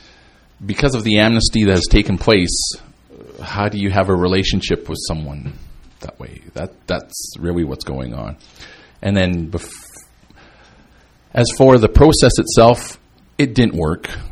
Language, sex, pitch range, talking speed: English, male, 85-105 Hz, 145 wpm